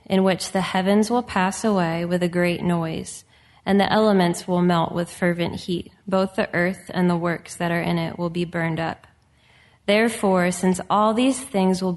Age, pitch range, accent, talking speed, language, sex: 20-39, 175-195 Hz, American, 195 wpm, English, female